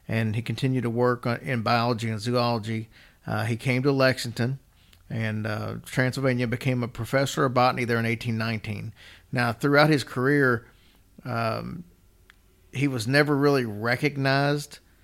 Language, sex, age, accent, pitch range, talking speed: English, male, 50-69, American, 115-130 Hz, 140 wpm